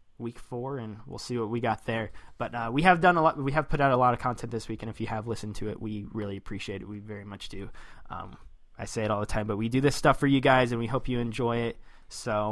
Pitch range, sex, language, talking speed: 115-145 Hz, male, English, 300 wpm